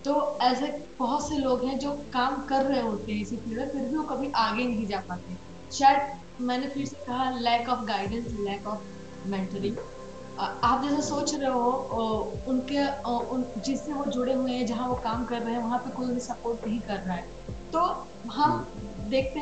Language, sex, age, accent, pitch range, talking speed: Hindi, female, 20-39, native, 230-280 Hz, 195 wpm